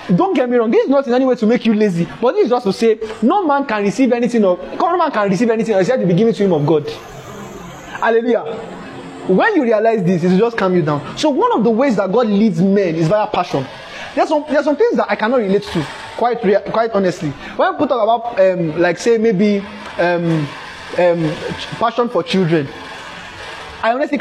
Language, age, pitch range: English, 20-39, 180-235 Hz